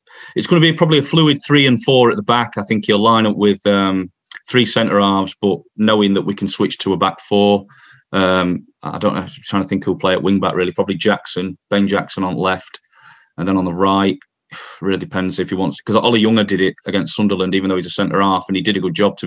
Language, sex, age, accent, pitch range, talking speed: English, male, 30-49, British, 95-110 Hz, 250 wpm